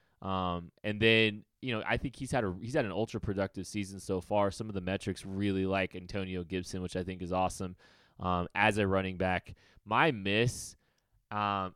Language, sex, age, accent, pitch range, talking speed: English, male, 20-39, American, 95-105 Hz, 195 wpm